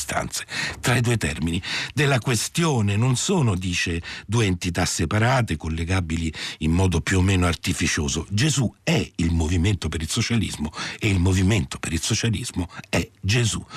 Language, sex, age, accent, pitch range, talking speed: Italian, male, 60-79, native, 85-125 Hz, 150 wpm